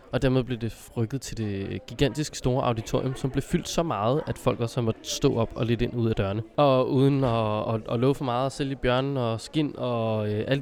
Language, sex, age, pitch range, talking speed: Danish, male, 20-39, 115-145 Hz, 235 wpm